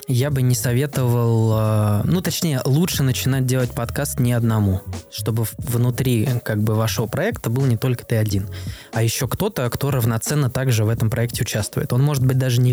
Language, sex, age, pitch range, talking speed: Russian, male, 20-39, 110-130 Hz, 180 wpm